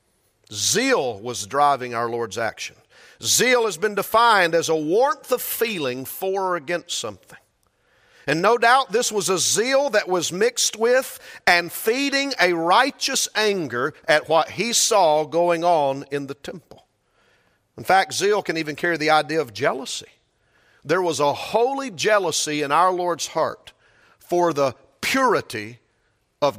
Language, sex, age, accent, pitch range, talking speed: English, male, 50-69, American, 130-215 Hz, 150 wpm